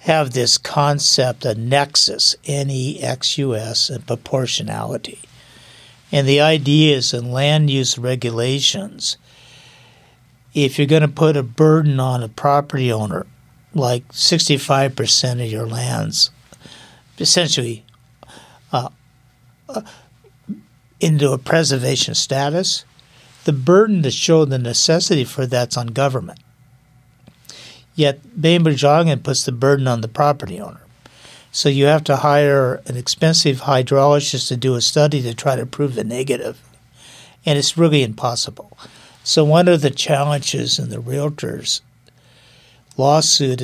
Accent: American